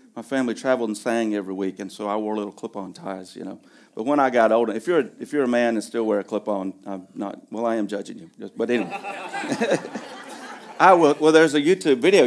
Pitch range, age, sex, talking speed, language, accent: 105-145 Hz, 40-59, male, 240 wpm, English, American